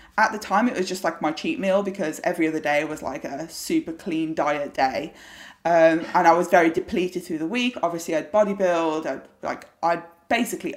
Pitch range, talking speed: 165-235 Hz, 205 wpm